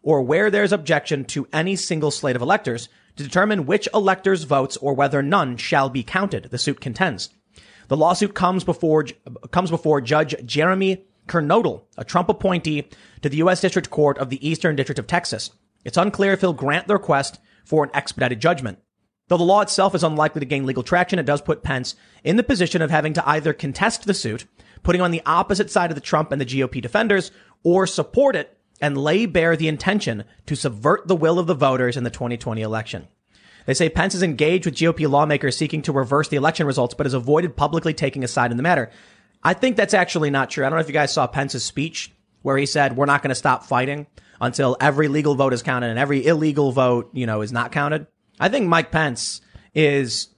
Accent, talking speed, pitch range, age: American, 215 wpm, 135-175 Hz, 30-49